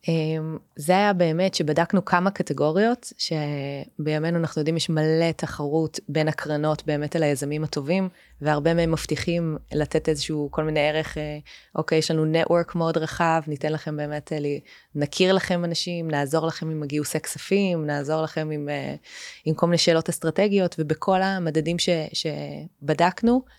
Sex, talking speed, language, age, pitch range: female, 140 wpm, Hebrew, 20-39, 150-170 Hz